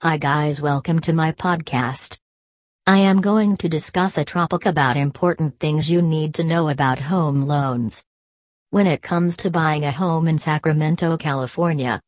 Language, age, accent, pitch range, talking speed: English, 40-59, American, 145-180 Hz, 165 wpm